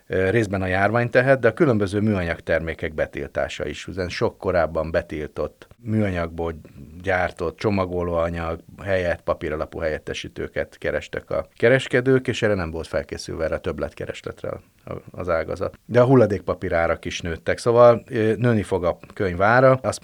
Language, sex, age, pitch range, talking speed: Hungarian, male, 30-49, 85-115 Hz, 130 wpm